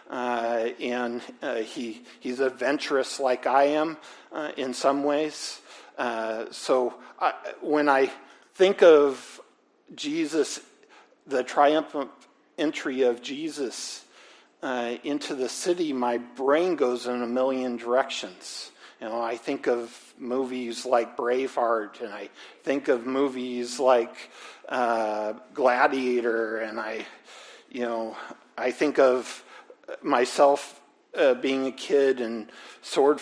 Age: 50-69